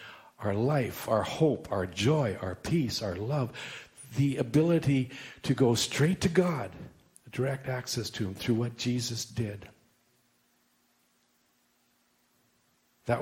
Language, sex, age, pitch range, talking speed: English, male, 50-69, 100-125 Hz, 120 wpm